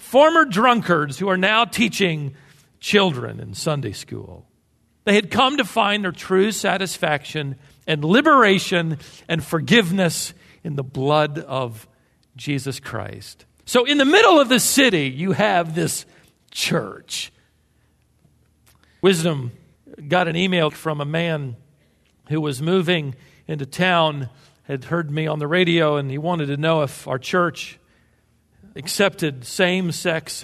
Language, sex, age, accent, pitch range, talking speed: English, male, 50-69, American, 140-185 Hz, 130 wpm